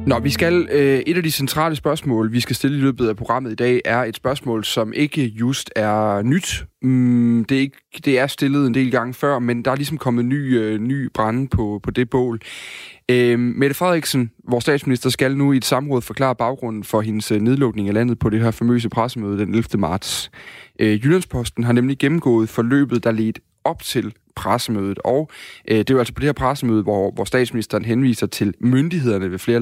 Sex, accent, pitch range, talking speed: male, native, 110-130 Hz, 210 wpm